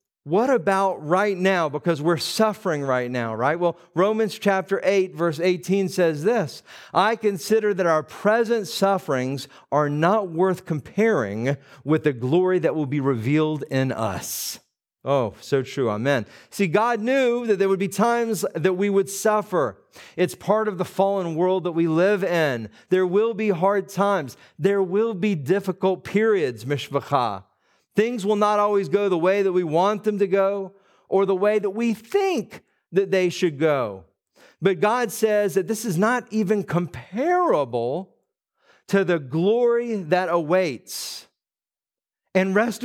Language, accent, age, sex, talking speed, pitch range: English, American, 50-69, male, 160 wpm, 160-210 Hz